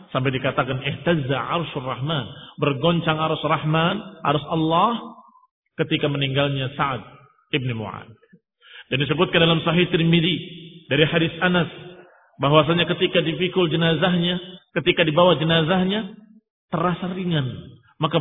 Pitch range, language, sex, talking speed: 140-185 Hz, Indonesian, male, 110 wpm